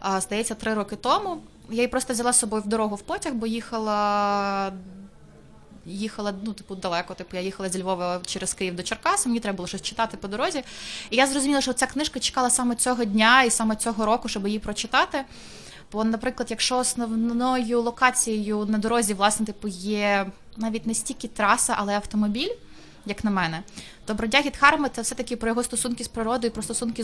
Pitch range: 190-235 Hz